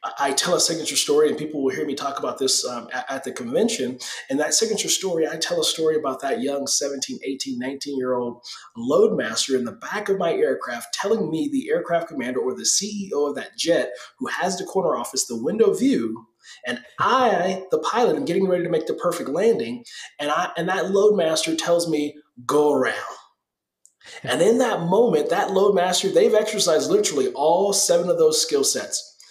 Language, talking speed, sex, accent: English, 195 wpm, male, American